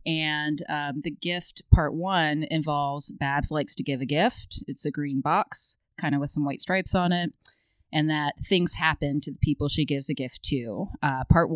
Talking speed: 205 wpm